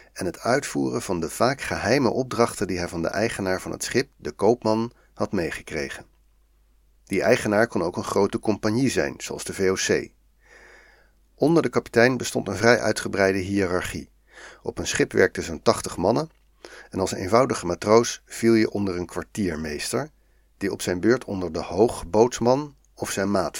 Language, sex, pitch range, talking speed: Dutch, male, 90-115 Hz, 165 wpm